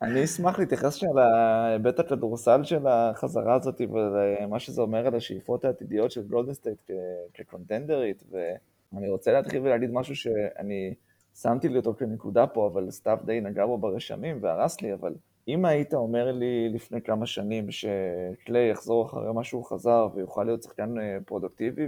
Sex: male